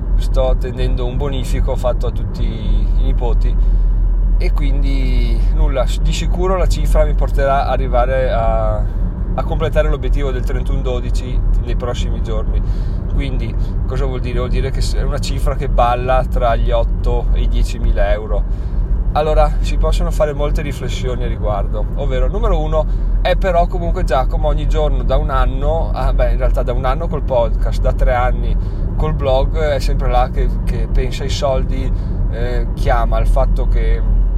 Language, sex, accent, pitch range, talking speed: Italian, male, native, 95-125 Hz, 165 wpm